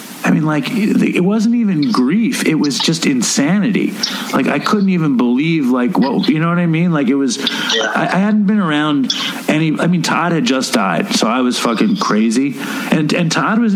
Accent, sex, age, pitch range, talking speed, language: American, male, 40-59, 170-235 Hz, 200 wpm, English